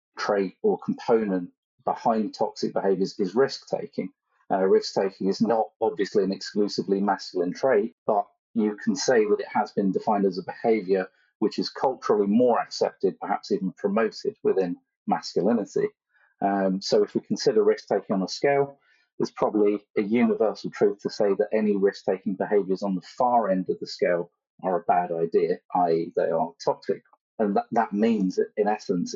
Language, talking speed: English, 160 wpm